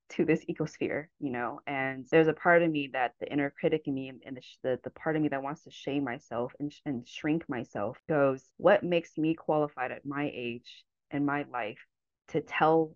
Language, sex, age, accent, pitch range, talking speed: English, female, 20-39, American, 135-165 Hz, 225 wpm